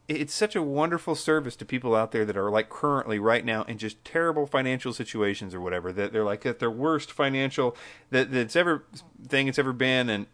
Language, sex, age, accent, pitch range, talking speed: English, male, 30-49, American, 110-145 Hz, 215 wpm